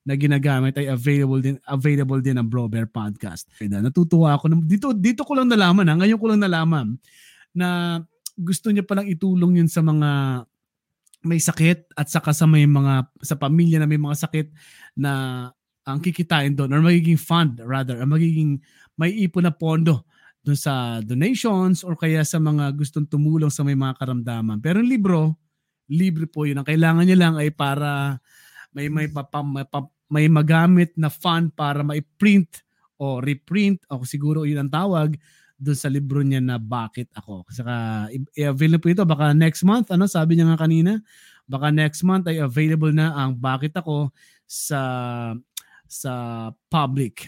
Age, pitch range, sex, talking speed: 20-39, 135-175 Hz, male, 170 wpm